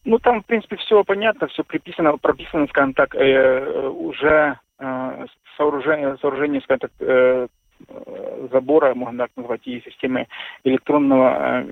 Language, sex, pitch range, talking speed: Russian, male, 130-220 Hz, 120 wpm